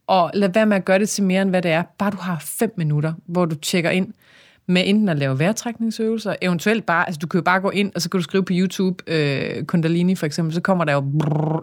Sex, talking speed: female, 270 wpm